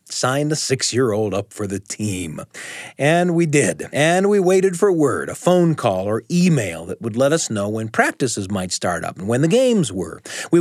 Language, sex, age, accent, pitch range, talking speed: English, male, 40-59, American, 125-195 Hz, 205 wpm